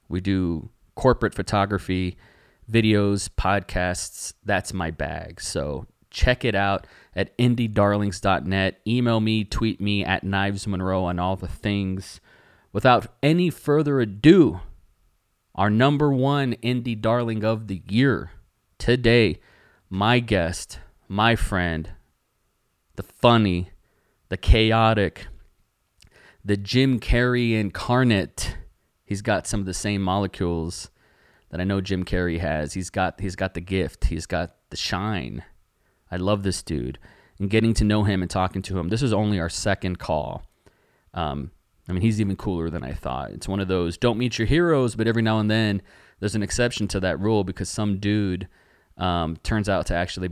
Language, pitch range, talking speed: English, 90-110 Hz, 155 wpm